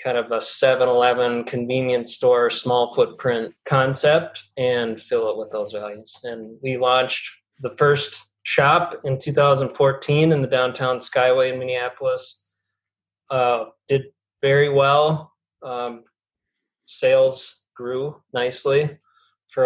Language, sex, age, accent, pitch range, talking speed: English, male, 20-39, American, 125-185 Hz, 115 wpm